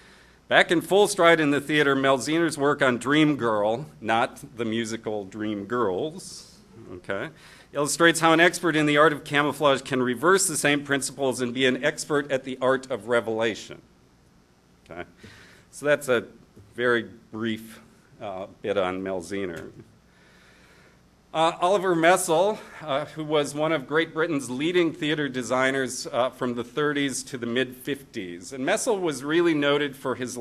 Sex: male